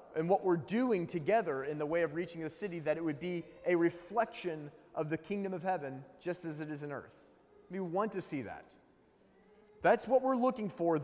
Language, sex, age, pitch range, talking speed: English, male, 30-49, 170-220 Hz, 210 wpm